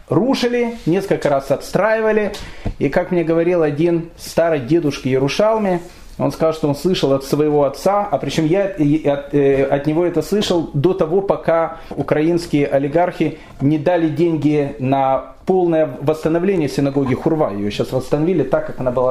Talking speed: 150 wpm